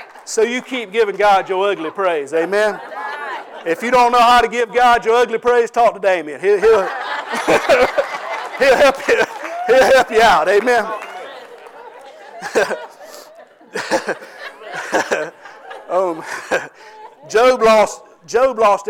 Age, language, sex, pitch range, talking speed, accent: 50-69, English, male, 175-220 Hz, 120 wpm, American